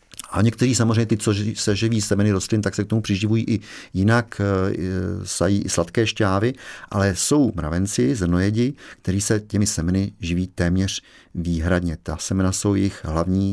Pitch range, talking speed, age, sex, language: 90-110 Hz, 165 wpm, 50-69, male, Czech